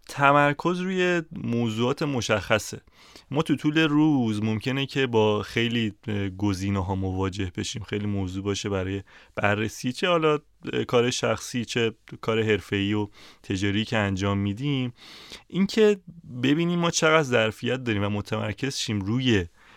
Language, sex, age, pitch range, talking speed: Persian, male, 30-49, 105-130 Hz, 130 wpm